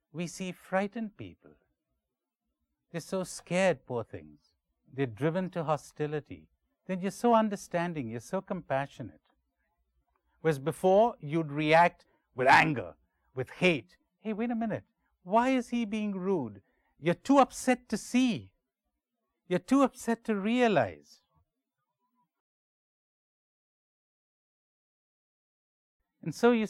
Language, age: English, 60-79